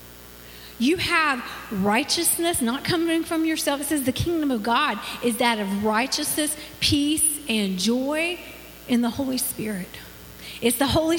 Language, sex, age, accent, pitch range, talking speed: English, female, 40-59, American, 225-300 Hz, 145 wpm